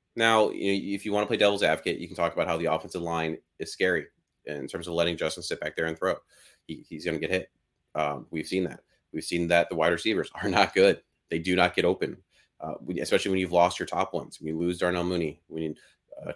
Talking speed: 240 wpm